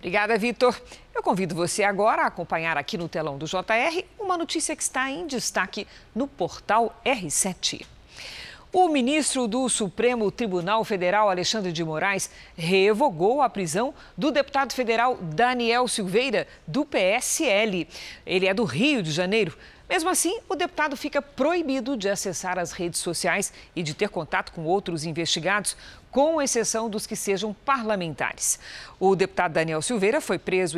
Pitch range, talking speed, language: 175-250 Hz, 150 wpm, Portuguese